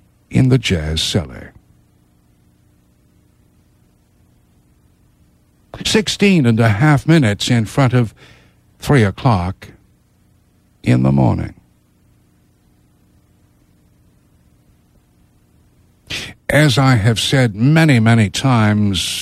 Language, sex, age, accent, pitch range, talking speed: English, male, 60-79, American, 95-140 Hz, 75 wpm